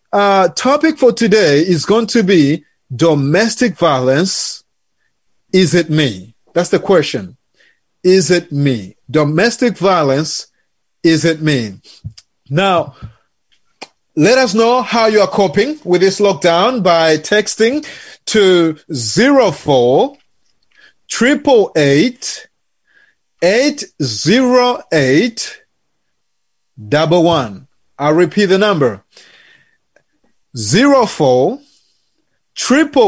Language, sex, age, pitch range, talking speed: English, male, 30-49, 160-235 Hz, 85 wpm